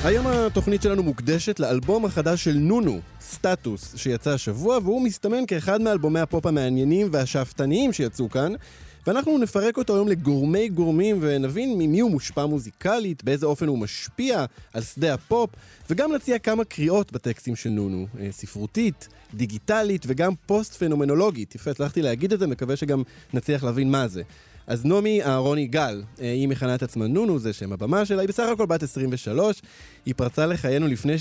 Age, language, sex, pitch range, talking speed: 20-39, Hebrew, male, 125-190 Hz, 160 wpm